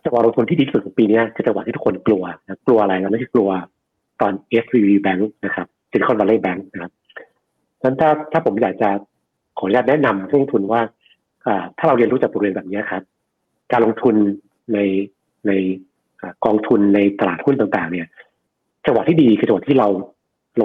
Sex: male